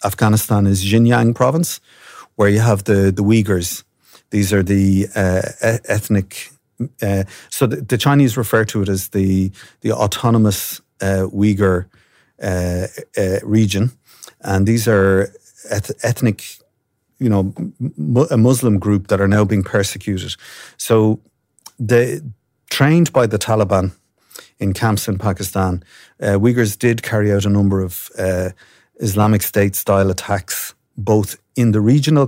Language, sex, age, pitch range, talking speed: English, male, 30-49, 95-115 Hz, 140 wpm